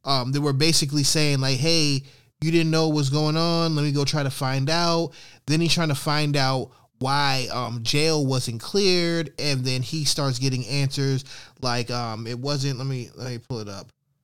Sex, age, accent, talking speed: male, 20-39, American, 205 wpm